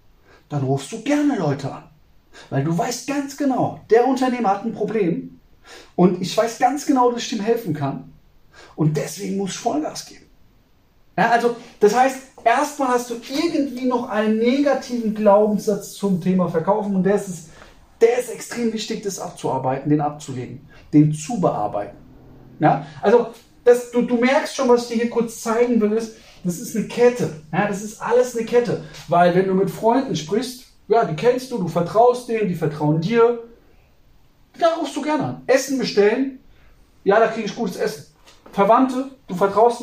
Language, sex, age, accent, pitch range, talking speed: German, male, 30-49, German, 150-240 Hz, 170 wpm